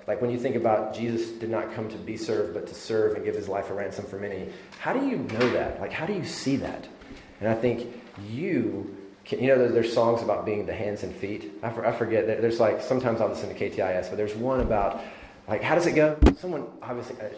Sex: male